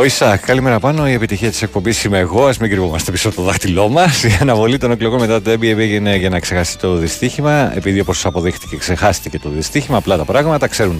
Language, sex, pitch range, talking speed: Greek, male, 90-120 Hz, 225 wpm